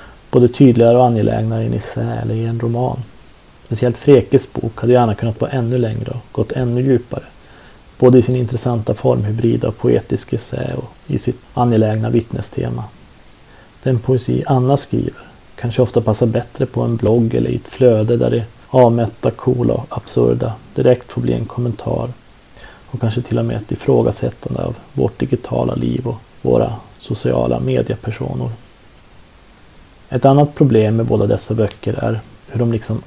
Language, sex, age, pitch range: Swedish, male, 30-49, 110-125 Hz